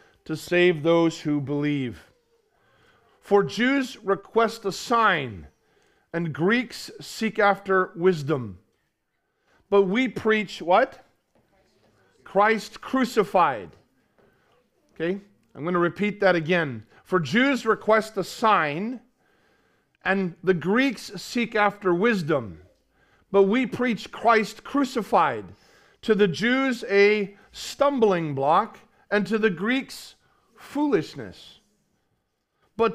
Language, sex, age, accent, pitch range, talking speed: English, male, 40-59, American, 180-230 Hz, 105 wpm